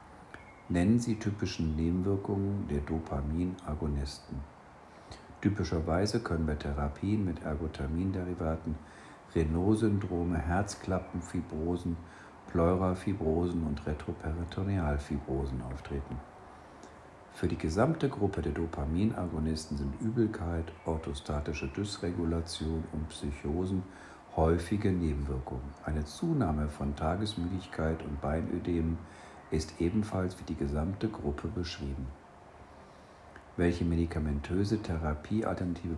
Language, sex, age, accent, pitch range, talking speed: German, male, 50-69, German, 75-90 Hz, 80 wpm